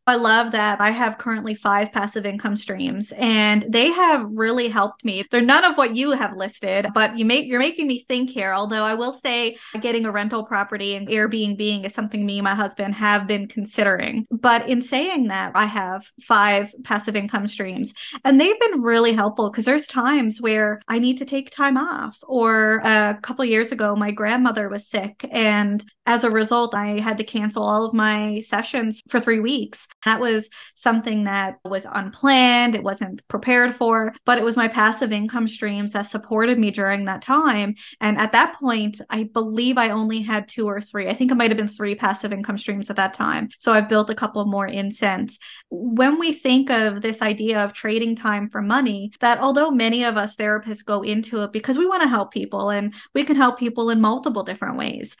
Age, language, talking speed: 20-39, English, 210 wpm